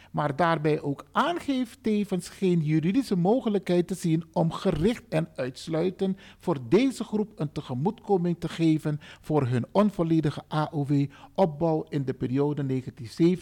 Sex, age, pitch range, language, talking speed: male, 50-69, 145-195 Hz, Dutch, 125 wpm